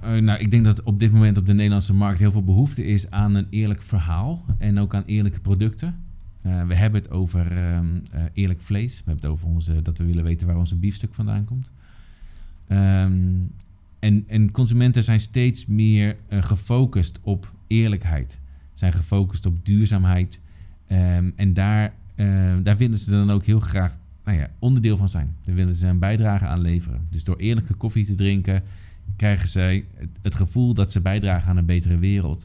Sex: male